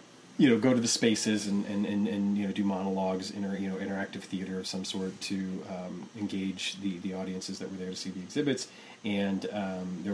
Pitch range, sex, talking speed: 100-115 Hz, male, 230 wpm